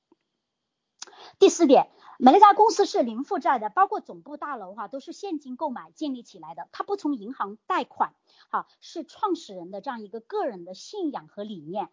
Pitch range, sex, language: 205-290 Hz, male, Chinese